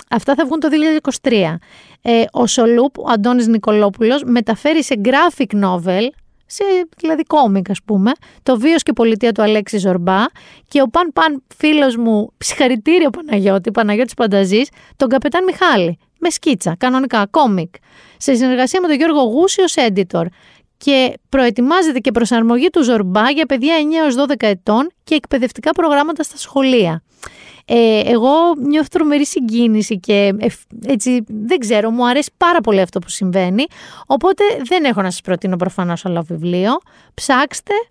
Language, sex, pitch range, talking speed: Greek, female, 205-290 Hz, 145 wpm